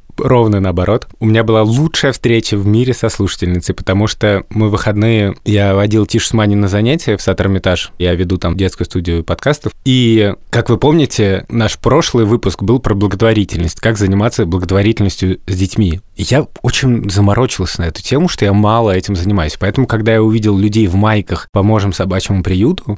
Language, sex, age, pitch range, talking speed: Russian, male, 20-39, 90-110 Hz, 175 wpm